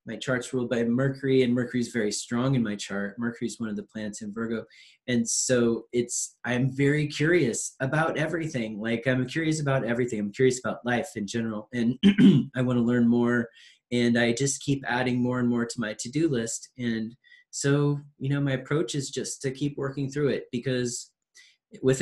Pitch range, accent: 115-140 Hz, American